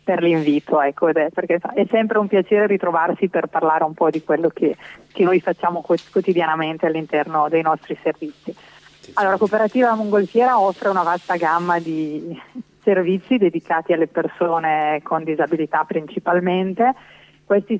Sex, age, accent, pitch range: female, 30-49, native, 160-185 Hz